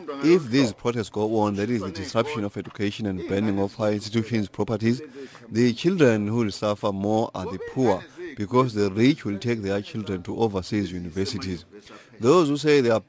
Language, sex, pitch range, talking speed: English, male, 100-130 Hz, 190 wpm